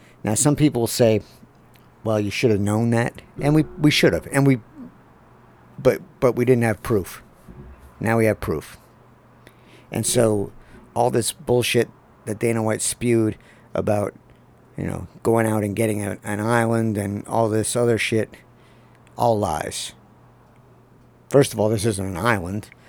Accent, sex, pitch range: American, male, 100-115 Hz